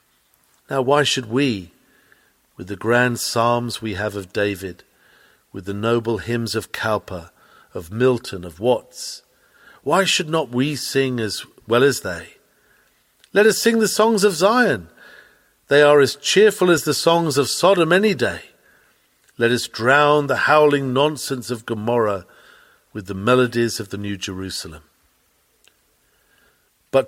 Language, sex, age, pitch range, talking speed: English, male, 50-69, 110-150 Hz, 145 wpm